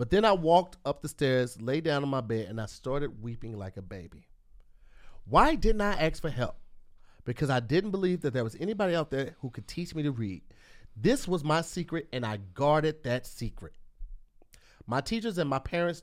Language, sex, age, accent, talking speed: English, male, 30-49, American, 205 wpm